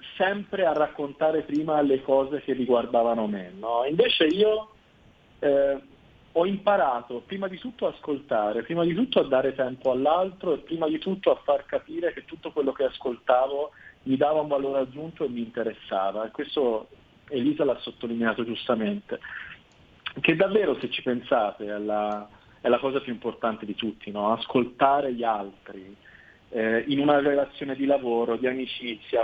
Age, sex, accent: 40-59, male, native